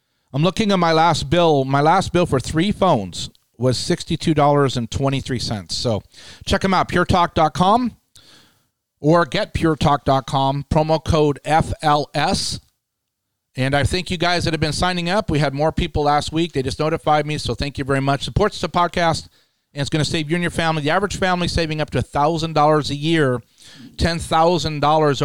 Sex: male